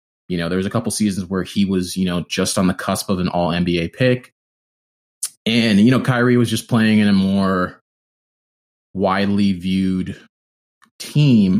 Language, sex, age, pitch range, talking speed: English, male, 20-39, 85-115 Hz, 175 wpm